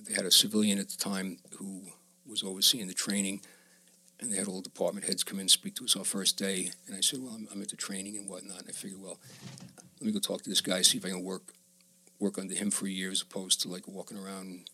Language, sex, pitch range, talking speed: English, male, 95-105 Hz, 270 wpm